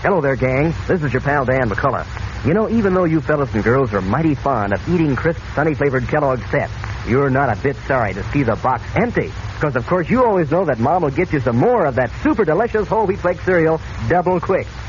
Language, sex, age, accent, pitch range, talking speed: English, male, 50-69, American, 110-160 Hz, 240 wpm